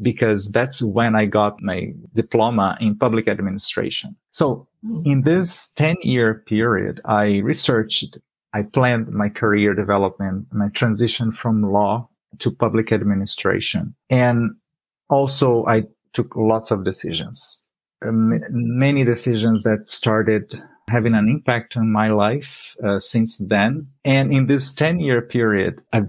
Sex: male